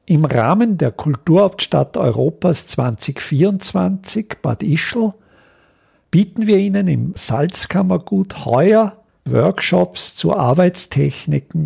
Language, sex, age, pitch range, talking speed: German, male, 50-69, 125-190 Hz, 85 wpm